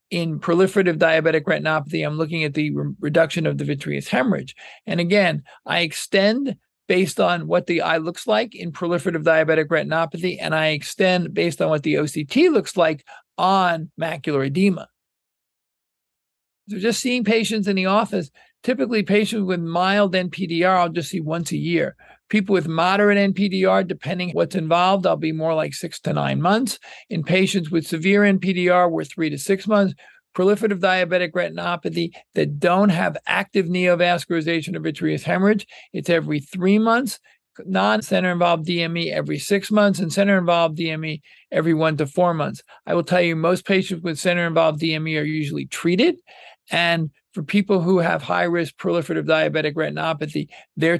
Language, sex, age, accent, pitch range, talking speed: English, male, 50-69, American, 160-195 Hz, 160 wpm